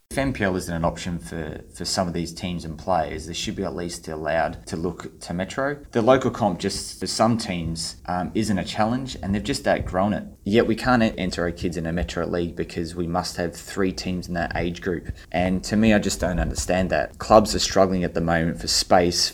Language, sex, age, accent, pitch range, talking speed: English, male, 20-39, Australian, 85-130 Hz, 235 wpm